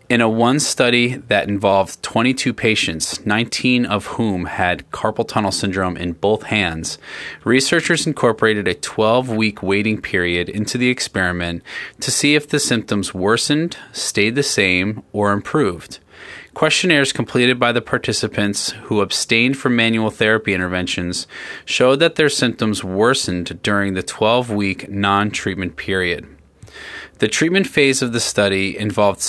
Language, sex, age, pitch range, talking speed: English, male, 20-39, 95-125 Hz, 135 wpm